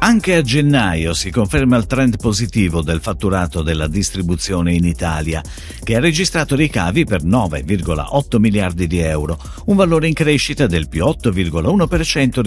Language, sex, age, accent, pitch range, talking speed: Italian, male, 50-69, native, 85-140 Hz, 145 wpm